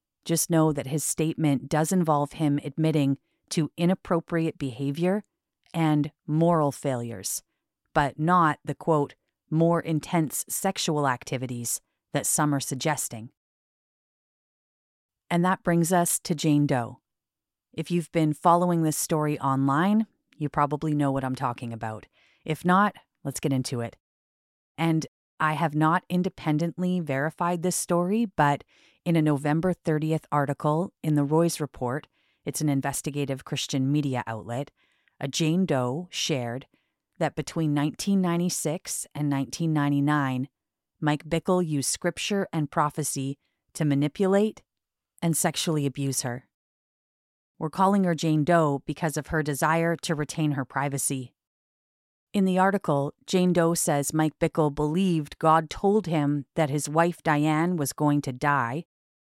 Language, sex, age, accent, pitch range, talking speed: English, female, 40-59, American, 140-170 Hz, 135 wpm